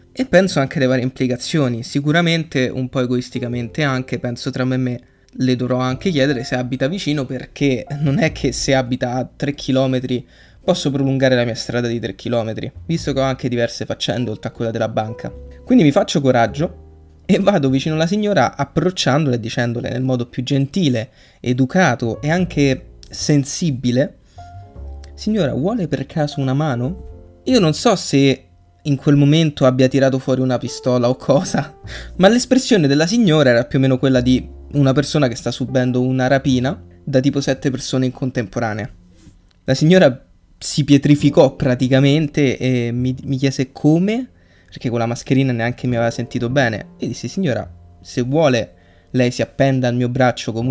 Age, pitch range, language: 20-39, 120-145 Hz, Italian